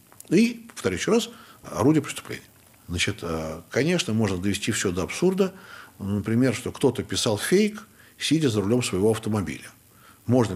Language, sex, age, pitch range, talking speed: Russian, male, 60-79, 100-130 Hz, 135 wpm